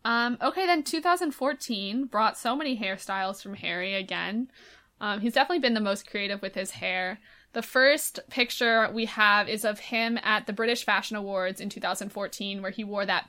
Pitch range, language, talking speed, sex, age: 195-235 Hz, English, 180 wpm, female, 20-39